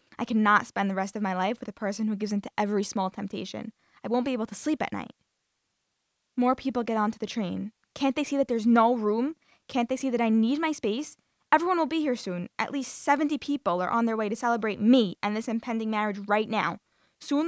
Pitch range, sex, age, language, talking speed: 205-265 Hz, female, 10-29, English, 240 wpm